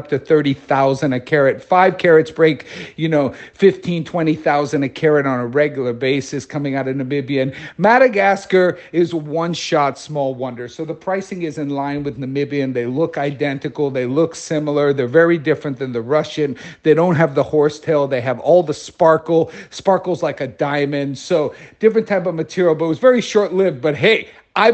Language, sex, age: English, male, 50-69